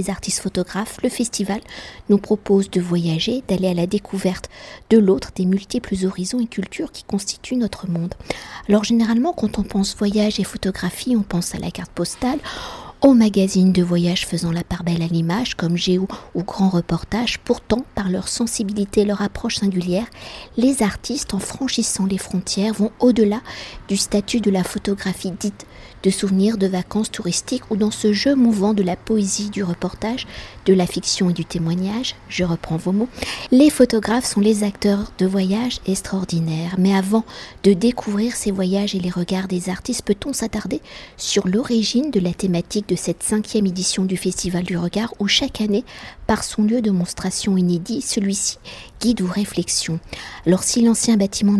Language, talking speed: French, 175 wpm